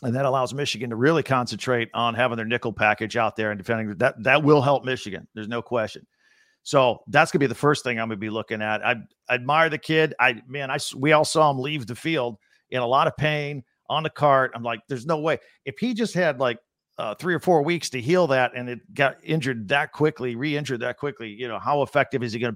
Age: 50-69